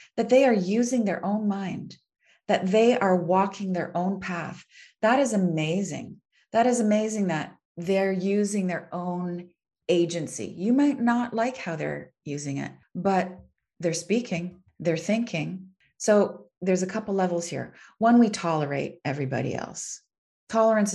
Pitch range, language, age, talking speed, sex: 150-205 Hz, English, 30-49, 145 wpm, female